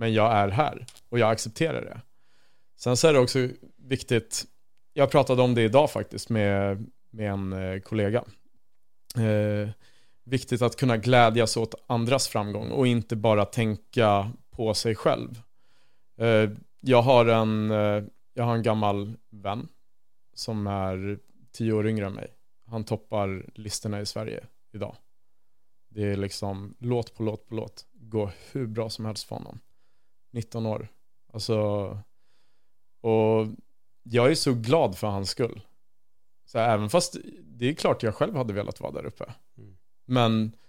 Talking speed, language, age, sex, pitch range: 155 wpm, Swedish, 30-49, male, 105-120 Hz